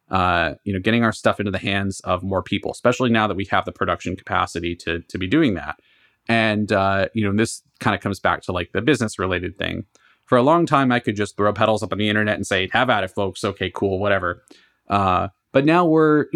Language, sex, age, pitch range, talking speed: English, male, 30-49, 100-120 Hz, 240 wpm